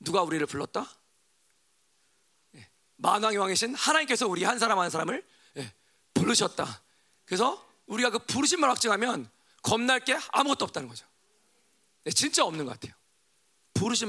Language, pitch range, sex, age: Korean, 160-250 Hz, male, 40-59